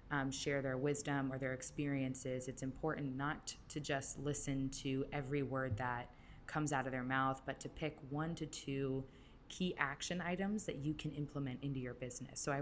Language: English